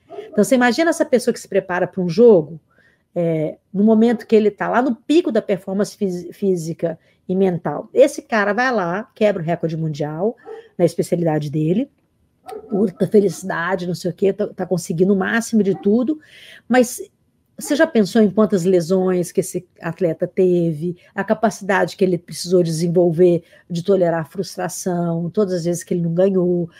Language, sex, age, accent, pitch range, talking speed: Portuguese, female, 50-69, Brazilian, 180-250 Hz, 170 wpm